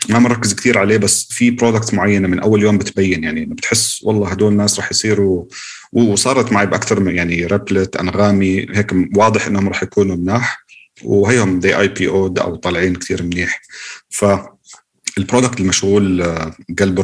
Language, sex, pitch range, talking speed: Arabic, male, 90-105 Hz, 155 wpm